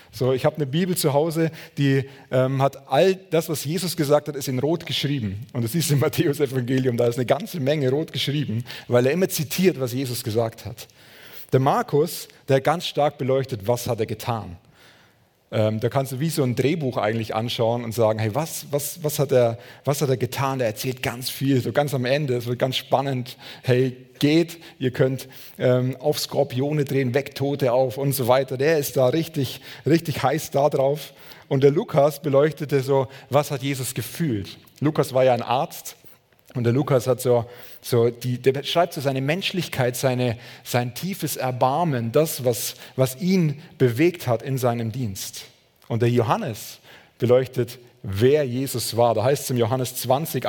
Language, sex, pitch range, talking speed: German, male, 125-150 Hz, 190 wpm